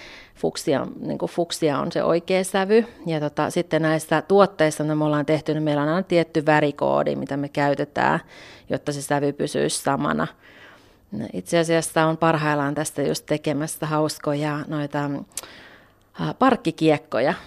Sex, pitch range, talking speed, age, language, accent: female, 150-165 Hz, 135 wpm, 30-49, Finnish, native